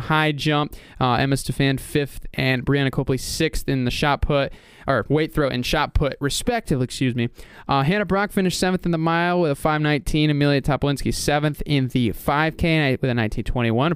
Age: 20-39